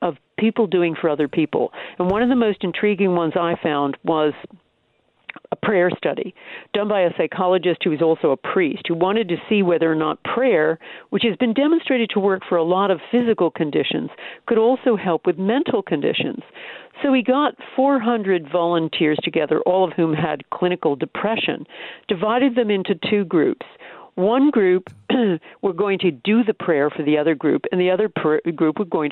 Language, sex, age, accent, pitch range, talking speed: English, female, 50-69, American, 165-230 Hz, 185 wpm